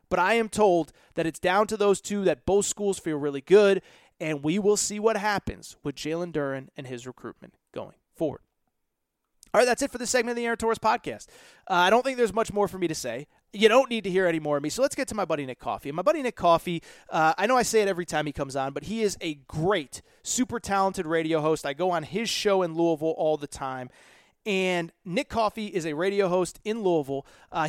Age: 30-49